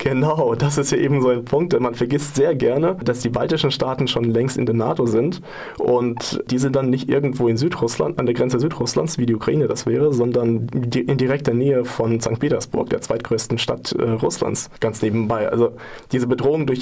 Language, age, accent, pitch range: German, 20-39, German, 120-140 Hz